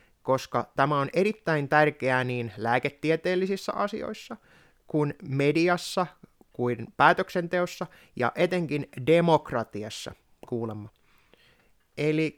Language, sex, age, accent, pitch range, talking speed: Finnish, male, 20-39, native, 125-170 Hz, 80 wpm